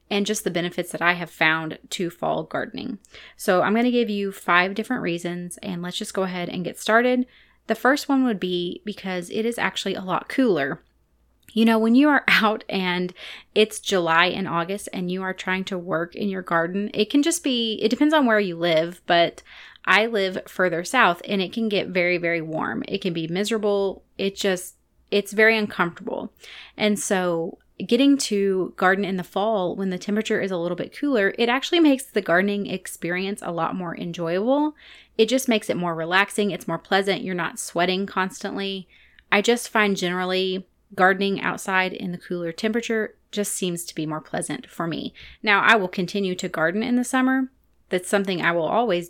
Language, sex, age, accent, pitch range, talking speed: English, female, 30-49, American, 180-220 Hz, 200 wpm